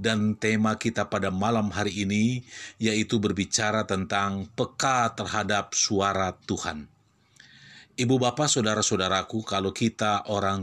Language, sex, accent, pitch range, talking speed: Indonesian, male, native, 100-120 Hz, 115 wpm